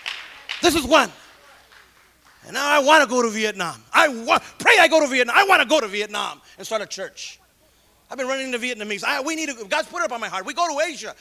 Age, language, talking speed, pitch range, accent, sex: 30-49, English, 255 wpm, 220-300 Hz, American, male